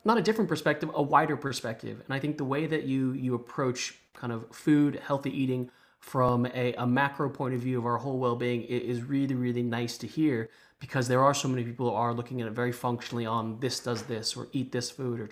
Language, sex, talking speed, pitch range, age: English, male, 240 wpm, 120-140 Hz, 20-39